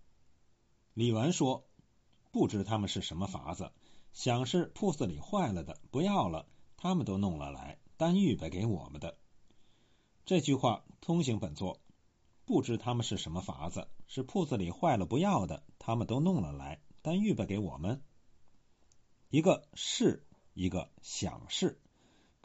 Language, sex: Chinese, male